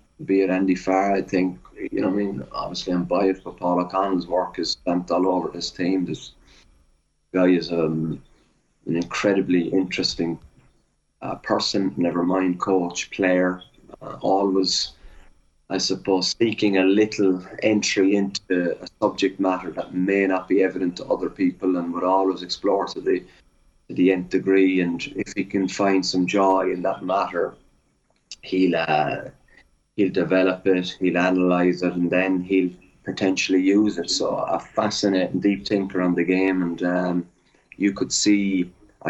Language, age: English, 30-49